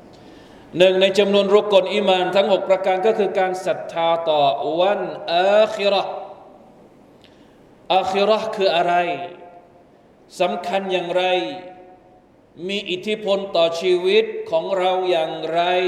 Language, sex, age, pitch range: Thai, male, 20-39, 175-200 Hz